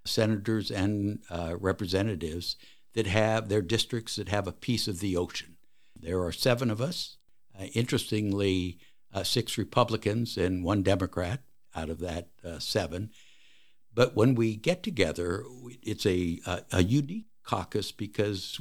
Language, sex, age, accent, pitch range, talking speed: English, male, 60-79, American, 90-120 Hz, 145 wpm